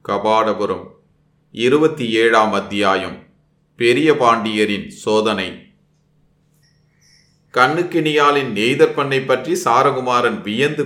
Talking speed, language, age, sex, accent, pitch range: 65 wpm, Tamil, 30-49, male, native, 110-145 Hz